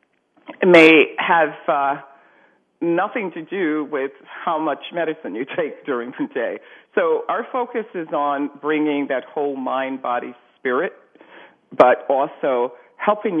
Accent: American